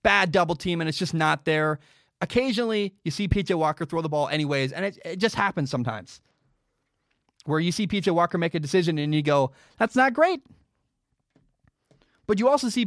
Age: 20-39